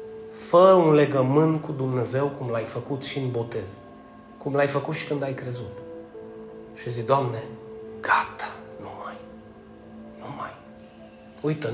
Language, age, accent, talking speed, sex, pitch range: Romanian, 30-49, native, 140 wpm, male, 115-155 Hz